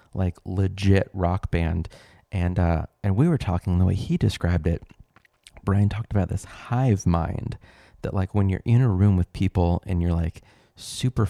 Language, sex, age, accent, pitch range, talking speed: English, male, 30-49, American, 90-110 Hz, 180 wpm